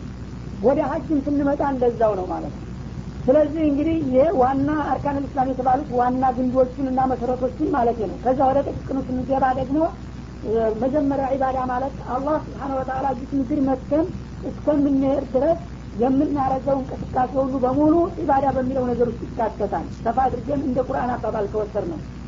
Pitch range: 255-285 Hz